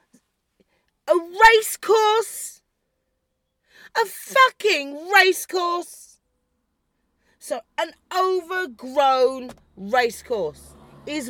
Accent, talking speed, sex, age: British, 70 wpm, female, 40-59